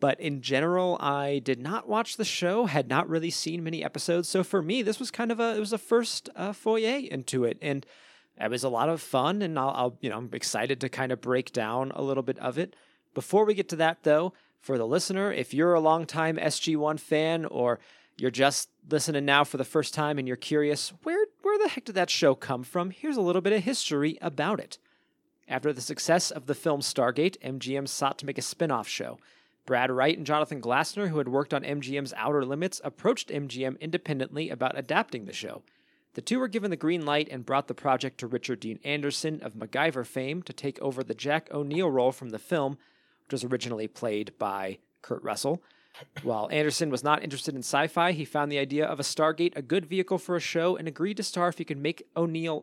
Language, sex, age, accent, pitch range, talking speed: English, male, 30-49, American, 135-180 Hz, 225 wpm